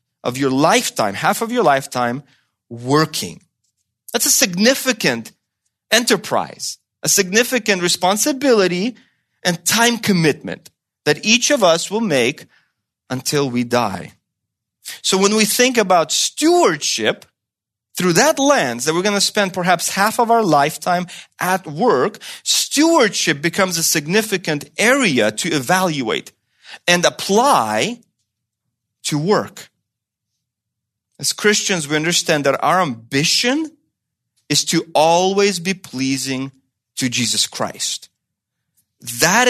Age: 30-49